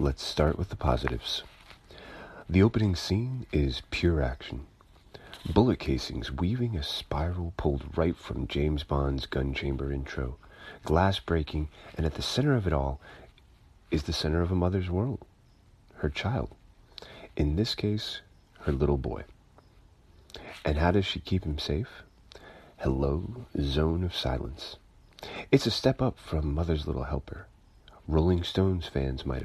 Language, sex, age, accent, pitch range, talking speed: English, male, 40-59, American, 75-95 Hz, 145 wpm